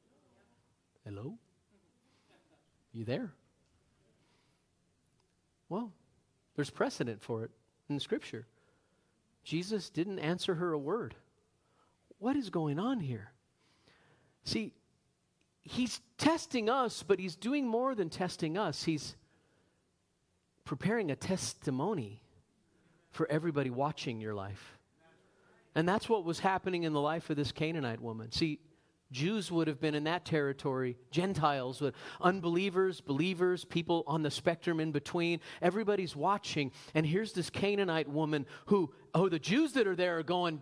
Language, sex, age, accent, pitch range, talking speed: English, male, 40-59, American, 150-205 Hz, 130 wpm